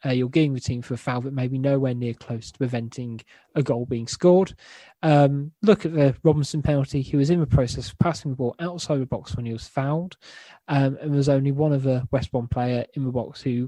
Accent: British